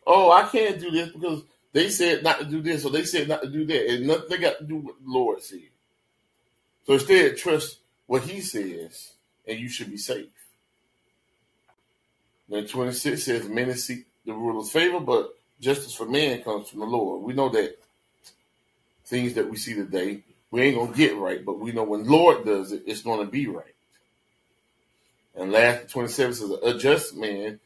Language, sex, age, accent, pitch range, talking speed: English, male, 30-49, American, 110-150 Hz, 195 wpm